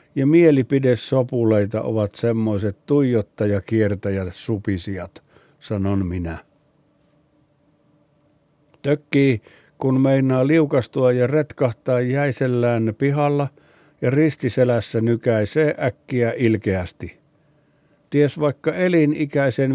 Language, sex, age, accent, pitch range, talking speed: Finnish, male, 60-79, native, 120-145 Hz, 75 wpm